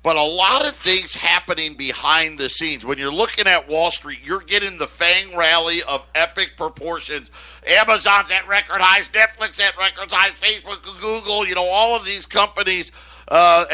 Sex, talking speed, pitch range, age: male, 175 wpm, 165-205 Hz, 50-69